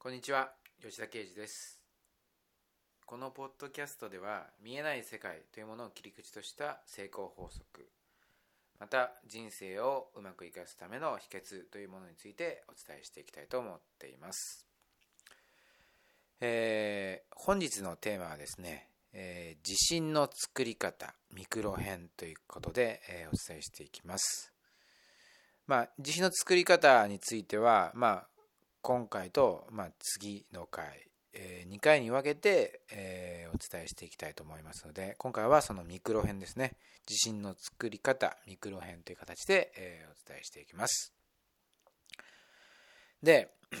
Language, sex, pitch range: Japanese, male, 95-140 Hz